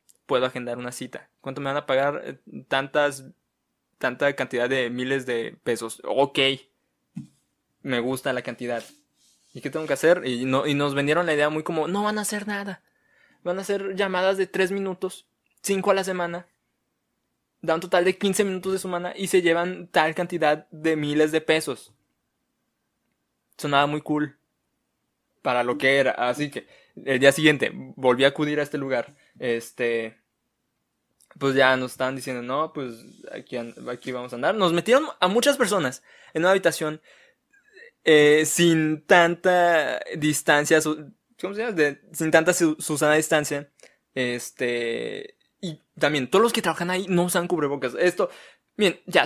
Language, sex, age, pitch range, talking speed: Spanish, male, 20-39, 135-180 Hz, 165 wpm